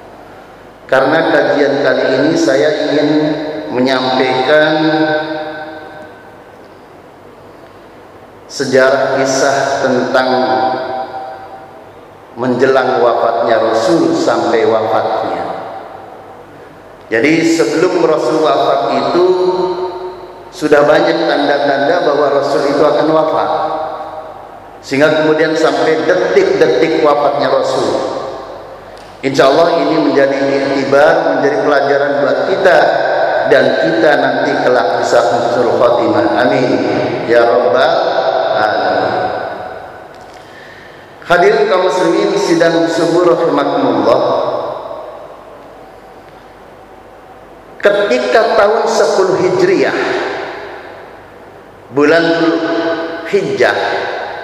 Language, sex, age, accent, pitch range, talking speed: Indonesian, male, 40-59, native, 130-165 Hz, 70 wpm